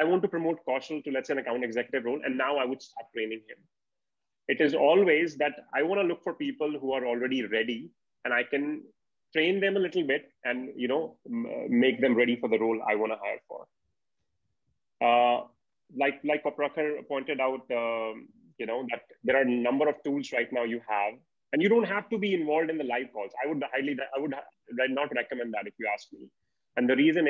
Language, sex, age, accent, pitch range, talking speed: English, male, 30-49, Indian, 120-155 Hz, 220 wpm